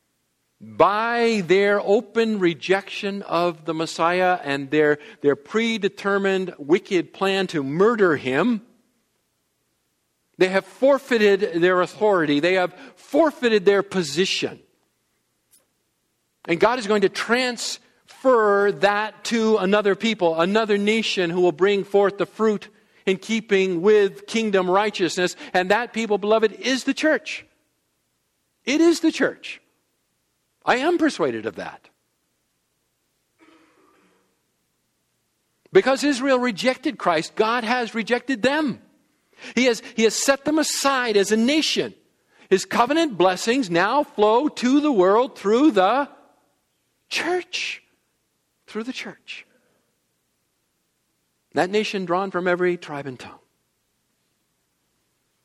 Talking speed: 115 wpm